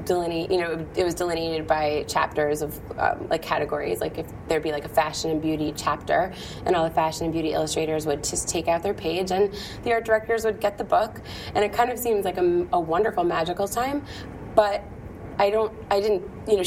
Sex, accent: female, American